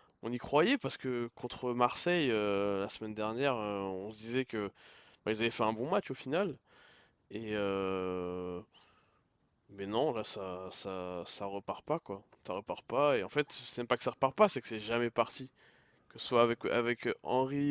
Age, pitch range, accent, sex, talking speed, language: 20-39, 105-130 Hz, French, male, 195 wpm, French